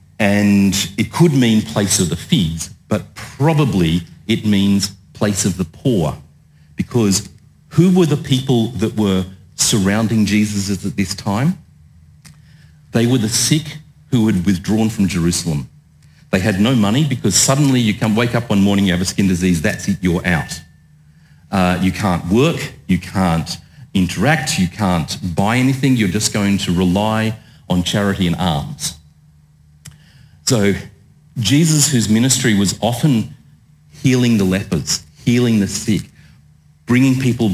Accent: Australian